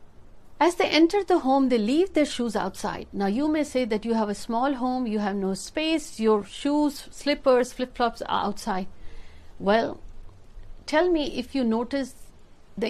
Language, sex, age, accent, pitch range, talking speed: Hindi, female, 60-79, native, 195-270 Hz, 170 wpm